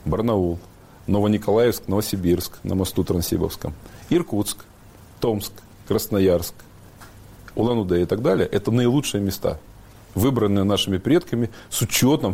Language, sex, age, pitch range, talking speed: Russian, male, 40-59, 95-115 Hz, 100 wpm